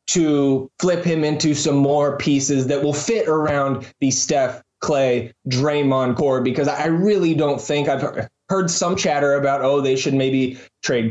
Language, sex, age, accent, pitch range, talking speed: English, male, 20-39, American, 130-155 Hz, 165 wpm